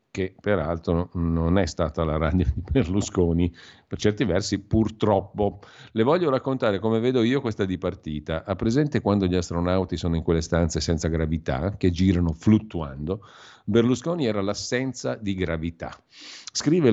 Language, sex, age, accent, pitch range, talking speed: Italian, male, 50-69, native, 85-110 Hz, 145 wpm